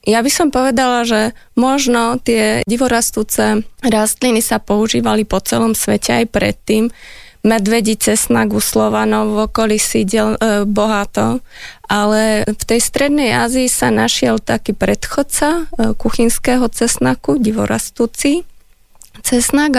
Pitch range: 205-235 Hz